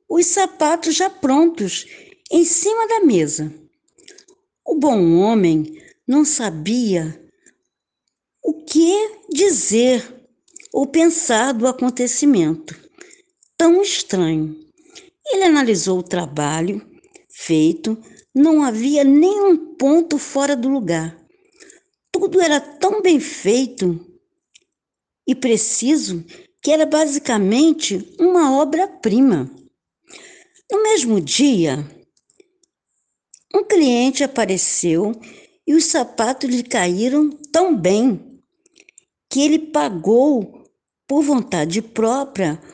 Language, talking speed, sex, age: Portuguese, 90 wpm, female, 60-79